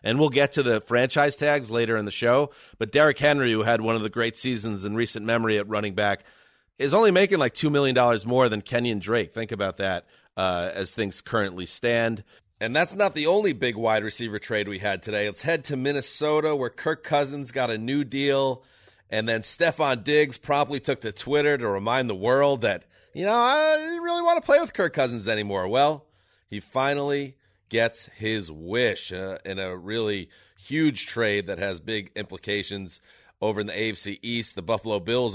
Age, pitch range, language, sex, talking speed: 30-49, 105-135 Hz, English, male, 200 wpm